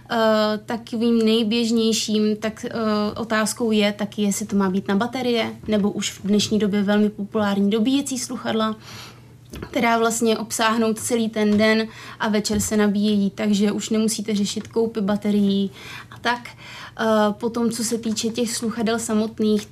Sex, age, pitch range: female, 20-39, 210-225 Hz